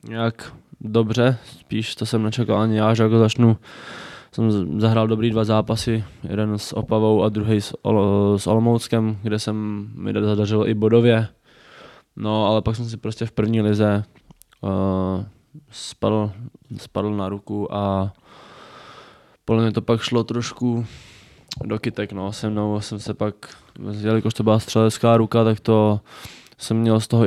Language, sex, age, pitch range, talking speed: Czech, male, 20-39, 105-115 Hz, 150 wpm